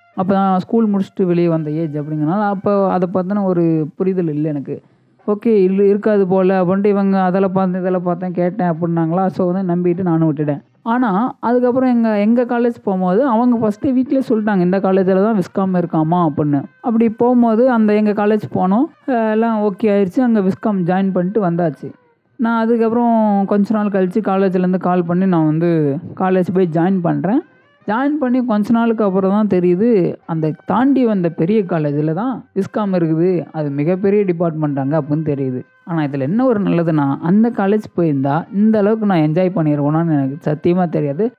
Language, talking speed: Tamil, 165 wpm